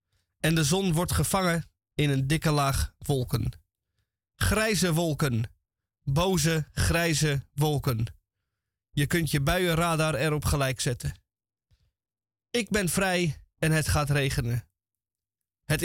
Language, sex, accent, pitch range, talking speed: Dutch, male, Dutch, 105-170 Hz, 115 wpm